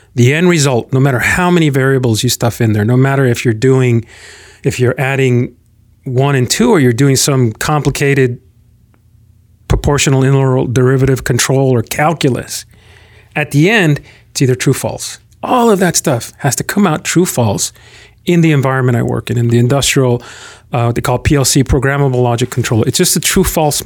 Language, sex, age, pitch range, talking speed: English, male, 40-59, 115-155 Hz, 175 wpm